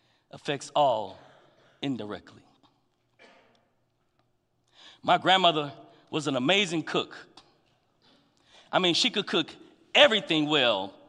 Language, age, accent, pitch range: English, 40-59, American, 170-230 Hz